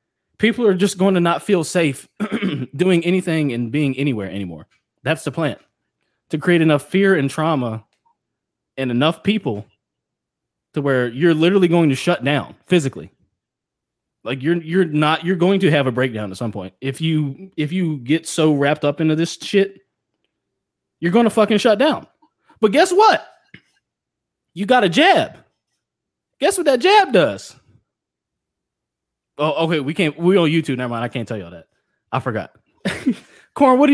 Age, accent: 20-39, American